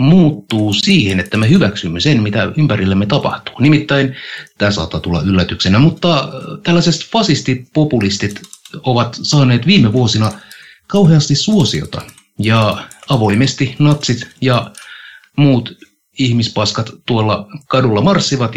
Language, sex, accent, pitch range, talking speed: Finnish, male, native, 100-145 Hz, 105 wpm